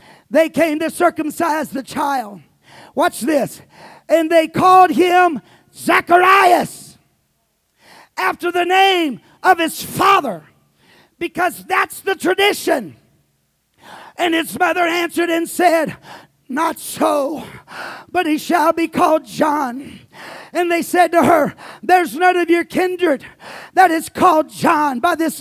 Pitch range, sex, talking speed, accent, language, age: 315-360 Hz, male, 125 wpm, American, English, 40-59